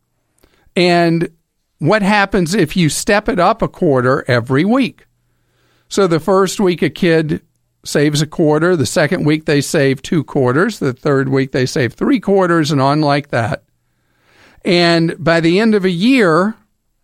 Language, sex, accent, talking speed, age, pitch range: English, male, American, 160 wpm, 50-69, 130-190 Hz